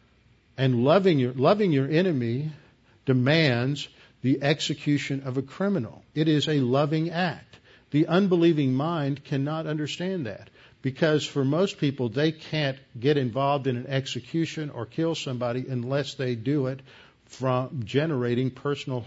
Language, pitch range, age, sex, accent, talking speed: English, 120-145 Hz, 50-69, male, American, 140 wpm